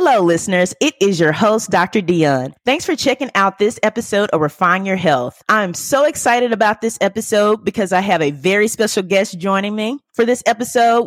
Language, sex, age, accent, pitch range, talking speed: English, female, 30-49, American, 175-230 Hz, 195 wpm